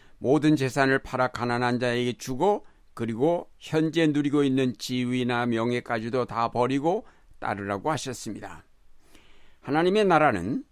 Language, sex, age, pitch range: Korean, male, 60-79, 115-140 Hz